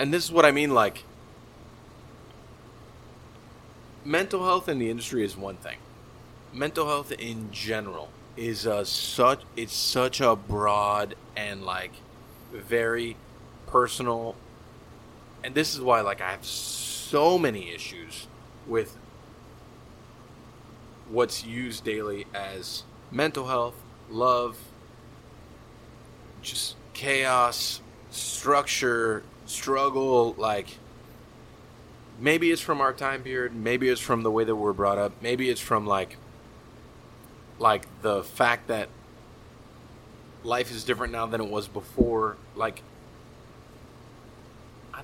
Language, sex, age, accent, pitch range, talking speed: English, male, 30-49, American, 110-125 Hz, 110 wpm